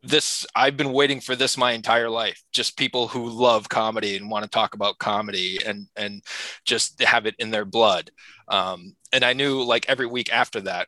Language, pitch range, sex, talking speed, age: English, 110-135 Hz, male, 200 wpm, 20-39